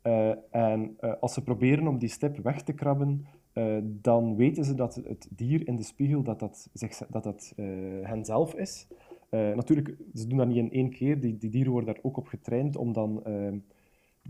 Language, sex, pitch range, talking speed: Dutch, male, 115-150 Hz, 210 wpm